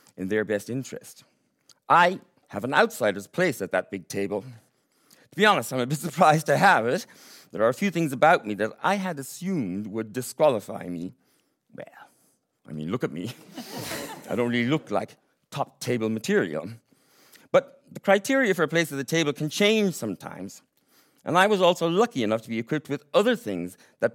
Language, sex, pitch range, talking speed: English, male, 110-165 Hz, 190 wpm